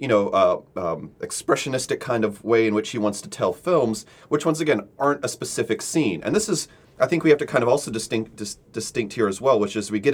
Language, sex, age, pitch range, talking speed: English, male, 30-49, 105-140 Hz, 250 wpm